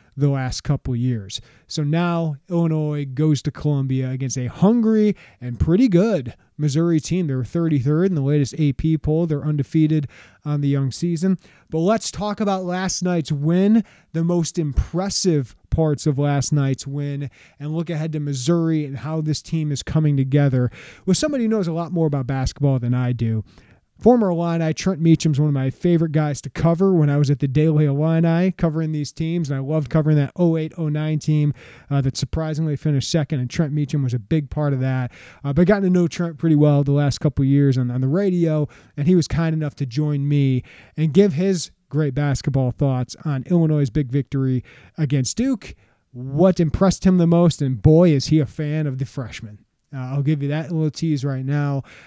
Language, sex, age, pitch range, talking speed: English, male, 30-49, 140-165 Hz, 200 wpm